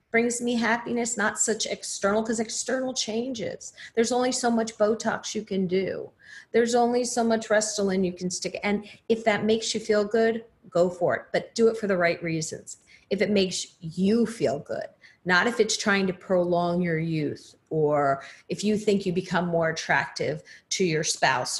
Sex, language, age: female, English, 40-59